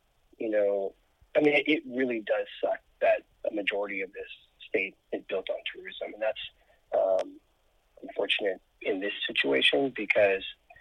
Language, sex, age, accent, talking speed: English, male, 30-49, American, 150 wpm